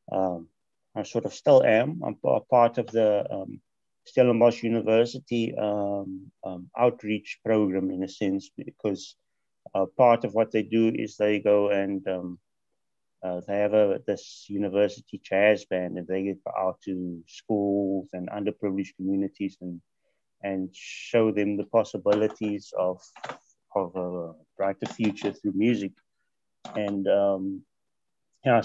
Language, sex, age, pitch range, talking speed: English, male, 30-49, 95-115 Hz, 140 wpm